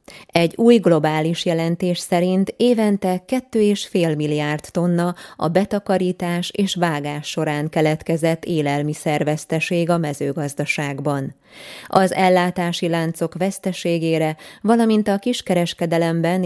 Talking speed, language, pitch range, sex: 90 wpm, Hungarian, 155-180 Hz, female